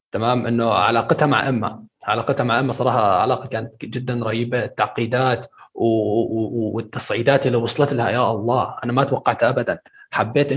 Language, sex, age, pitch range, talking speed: Arabic, male, 20-39, 115-135 Hz, 140 wpm